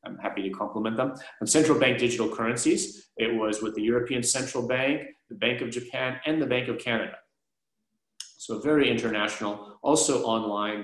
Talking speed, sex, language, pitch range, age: 170 wpm, male, English, 105-125 Hz, 30-49